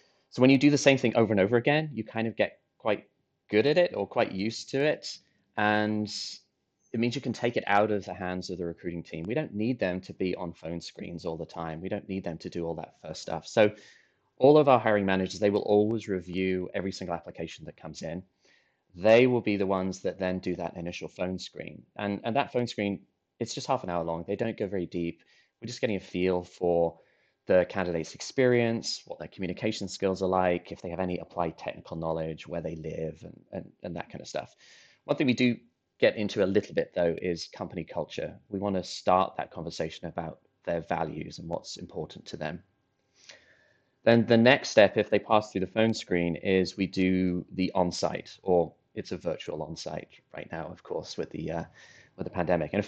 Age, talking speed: 20-39, 225 wpm